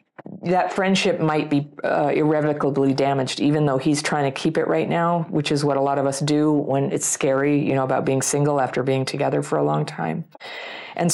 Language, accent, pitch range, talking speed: English, American, 135-170 Hz, 215 wpm